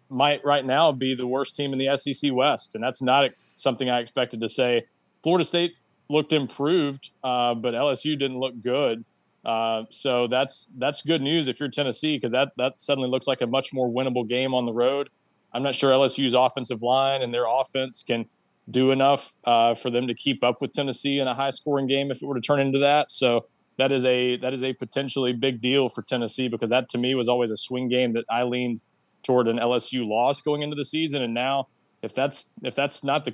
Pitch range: 120-140 Hz